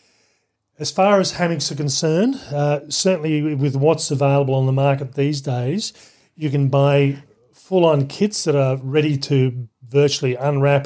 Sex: male